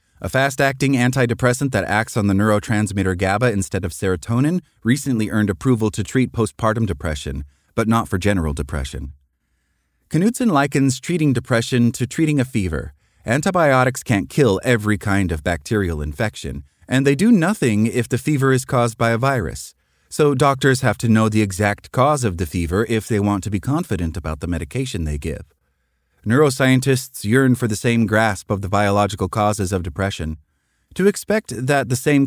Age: 30-49